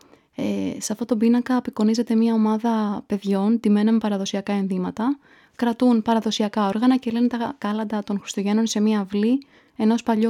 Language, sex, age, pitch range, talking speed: Greek, female, 20-39, 205-240 Hz, 155 wpm